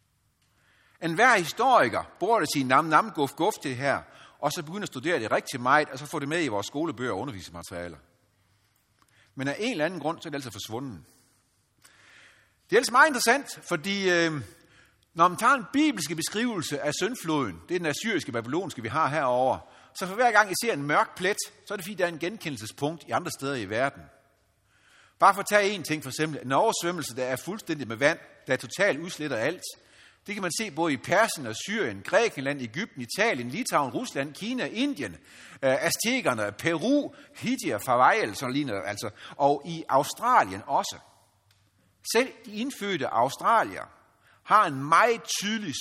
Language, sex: Danish, male